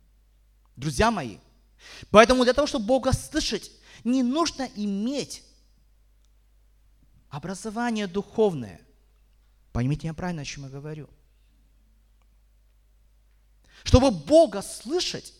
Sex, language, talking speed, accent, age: male, Russian, 90 wpm, native, 30-49